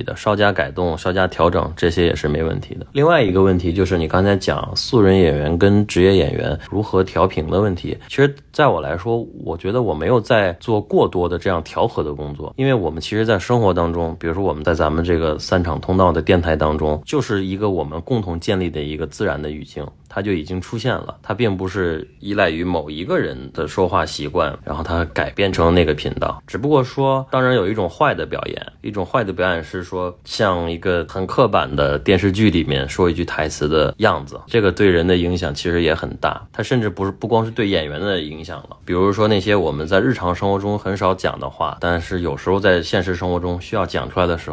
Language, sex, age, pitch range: Chinese, male, 20-39, 85-105 Hz